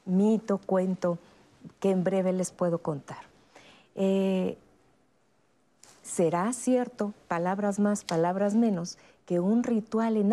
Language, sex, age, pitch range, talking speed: Spanish, female, 50-69, 180-220 Hz, 110 wpm